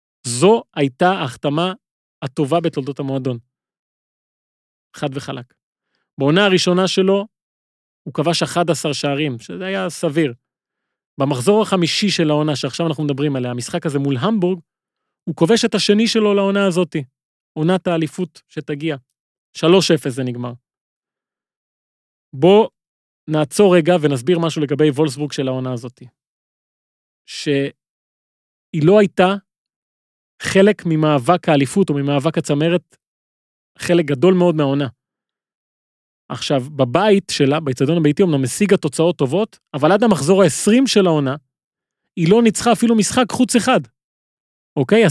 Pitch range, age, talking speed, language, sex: 140-190 Hz, 30-49, 120 wpm, Hebrew, male